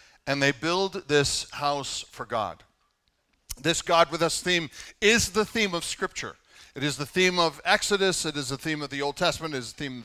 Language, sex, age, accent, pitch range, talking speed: English, male, 50-69, American, 140-185 Hz, 215 wpm